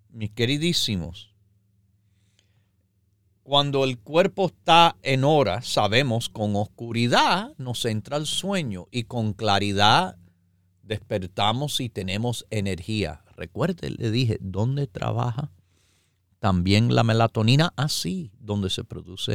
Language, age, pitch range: Spanish, 50-69, 90-140 Hz